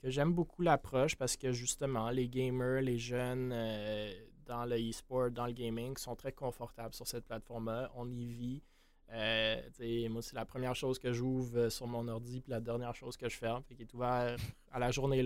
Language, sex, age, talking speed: French, male, 20-39, 200 wpm